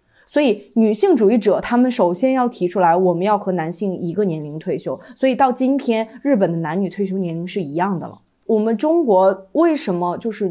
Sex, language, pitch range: female, Chinese, 180-230 Hz